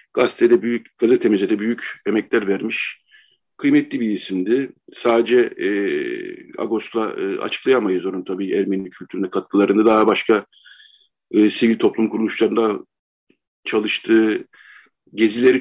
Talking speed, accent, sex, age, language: 105 wpm, native, male, 50-69, Turkish